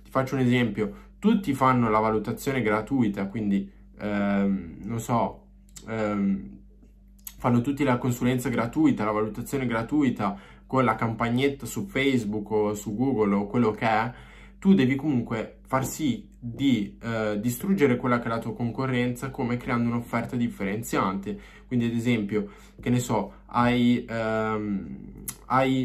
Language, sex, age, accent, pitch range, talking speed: Italian, male, 20-39, native, 105-125 Hz, 140 wpm